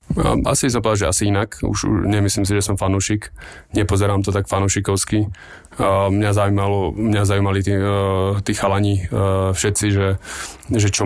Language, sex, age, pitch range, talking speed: Slovak, male, 20-39, 100-105 Hz, 130 wpm